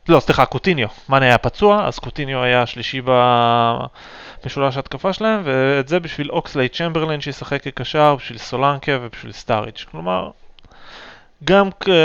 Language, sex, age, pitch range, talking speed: Hebrew, male, 30-49, 120-150 Hz, 130 wpm